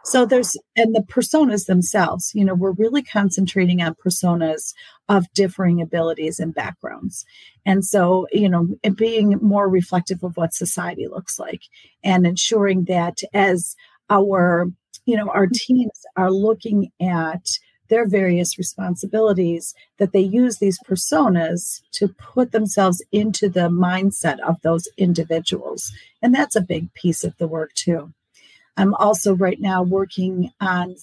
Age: 40-59